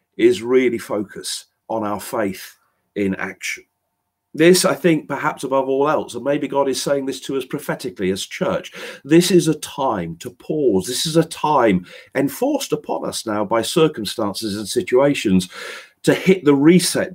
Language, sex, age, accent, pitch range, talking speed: English, male, 50-69, British, 125-180 Hz, 170 wpm